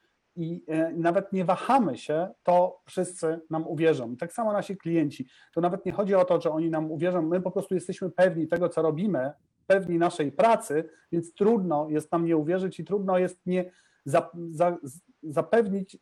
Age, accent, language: 40-59, native, Polish